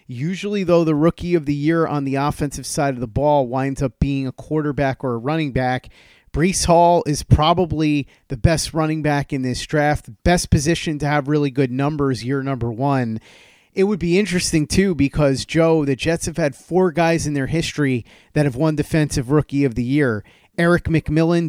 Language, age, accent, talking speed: English, 30-49, American, 195 wpm